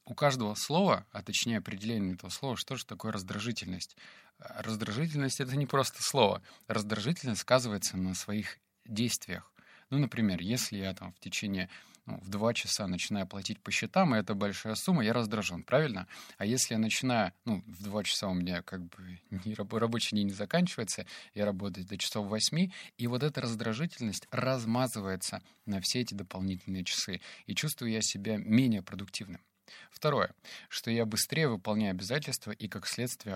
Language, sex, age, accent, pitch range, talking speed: Russian, male, 30-49, native, 95-120 Hz, 160 wpm